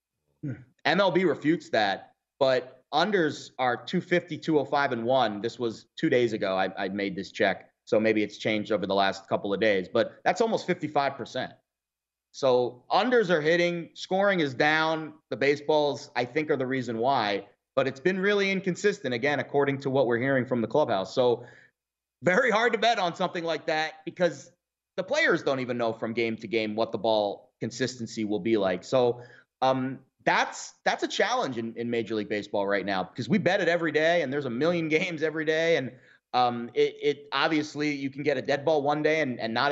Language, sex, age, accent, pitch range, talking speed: English, male, 30-49, American, 115-160 Hz, 200 wpm